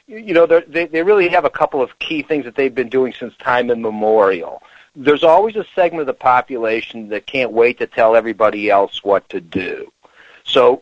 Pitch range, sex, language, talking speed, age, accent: 120-170 Hz, male, English, 200 wpm, 40-59, American